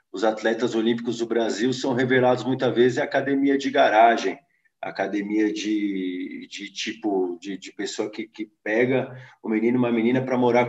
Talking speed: 170 wpm